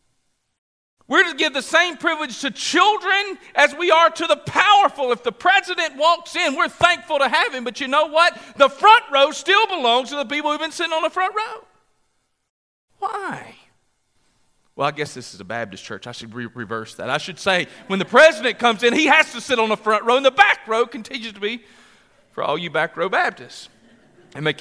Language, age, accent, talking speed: English, 40-59, American, 210 wpm